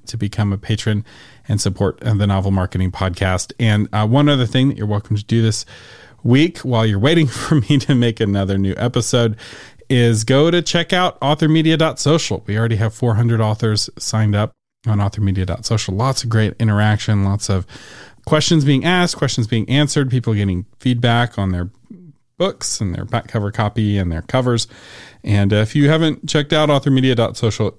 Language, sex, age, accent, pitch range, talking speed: English, male, 40-59, American, 105-135 Hz, 175 wpm